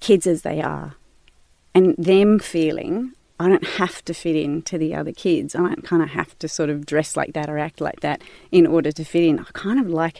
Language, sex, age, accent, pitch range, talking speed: English, female, 30-49, Australian, 165-225 Hz, 240 wpm